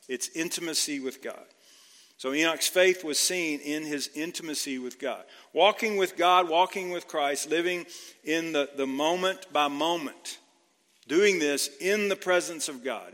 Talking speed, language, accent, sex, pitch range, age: 155 wpm, English, American, male, 135-180 Hz, 50-69